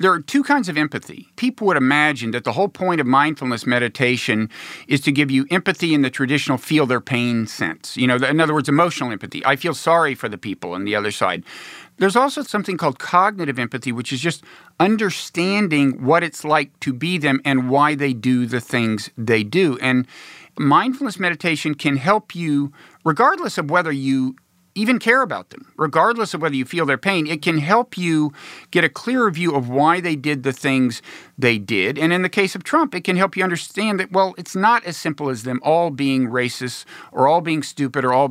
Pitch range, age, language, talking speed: 130-180 Hz, 50-69, English, 210 wpm